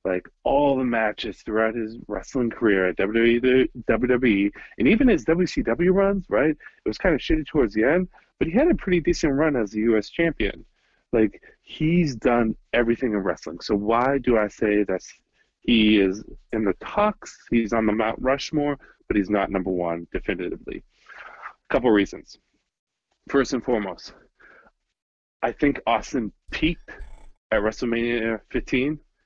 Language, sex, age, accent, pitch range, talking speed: English, male, 30-49, American, 105-140 Hz, 160 wpm